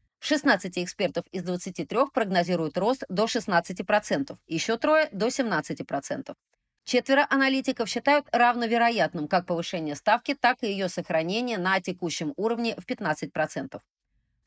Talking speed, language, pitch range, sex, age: 120 wpm, Russian, 170-240 Hz, female, 30-49